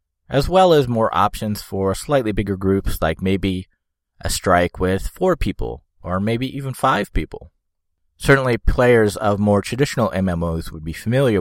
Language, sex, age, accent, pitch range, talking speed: English, male, 30-49, American, 85-120 Hz, 160 wpm